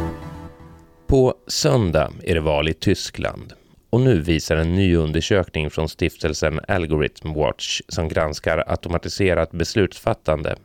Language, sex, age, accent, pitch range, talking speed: Swedish, male, 30-49, native, 80-95 Hz, 120 wpm